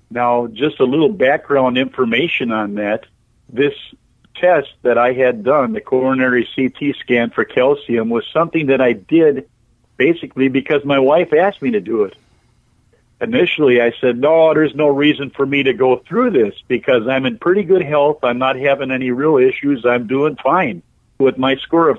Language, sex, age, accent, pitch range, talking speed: English, male, 50-69, American, 120-160 Hz, 180 wpm